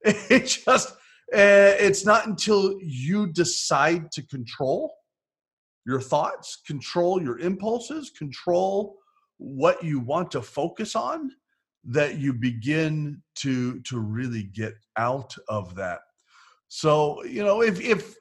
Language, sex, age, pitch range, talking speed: English, male, 30-49, 115-190 Hz, 115 wpm